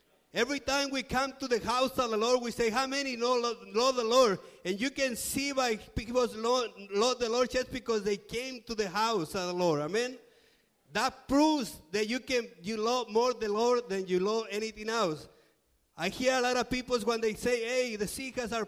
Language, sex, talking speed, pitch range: English, male, 210 wpm, 195-245 Hz